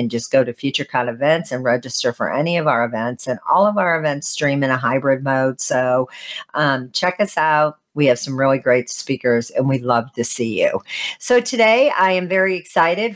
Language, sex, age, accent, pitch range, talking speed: English, female, 50-69, American, 130-155 Hz, 210 wpm